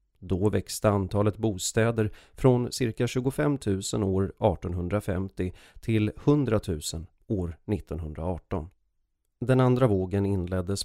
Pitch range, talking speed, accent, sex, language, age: 95-115 Hz, 105 wpm, native, male, Swedish, 30-49